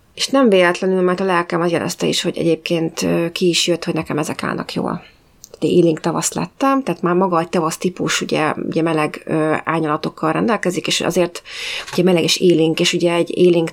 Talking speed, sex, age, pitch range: 190 wpm, female, 30-49, 170-195 Hz